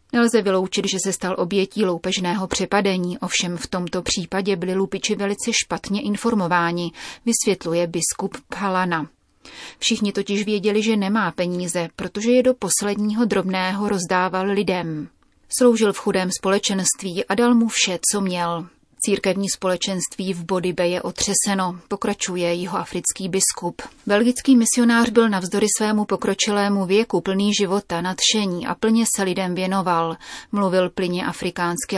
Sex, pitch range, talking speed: female, 180-210 Hz, 135 wpm